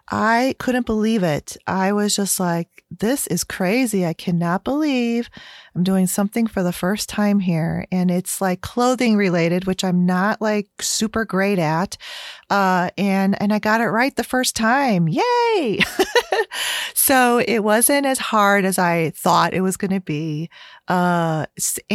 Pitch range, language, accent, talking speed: 165-215 Hz, English, American, 160 wpm